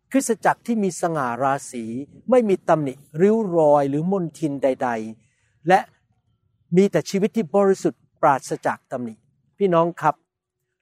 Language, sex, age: Thai, male, 60-79